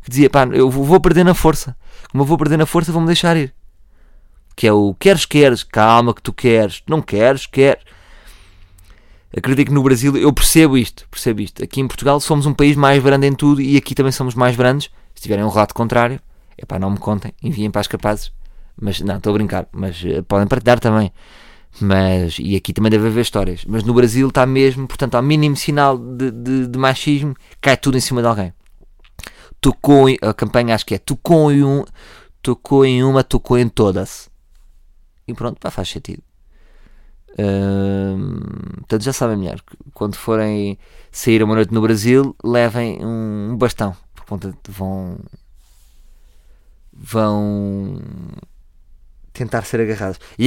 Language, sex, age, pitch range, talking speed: Portuguese, male, 20-39, 100-135 Hz, 170 wpm